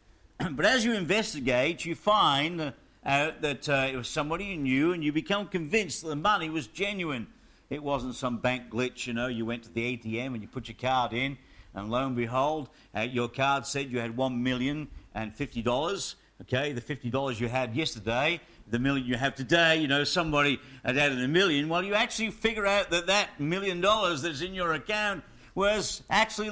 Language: English